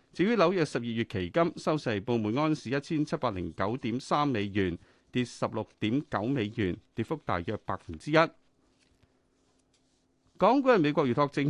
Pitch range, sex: 105-150 Hz, male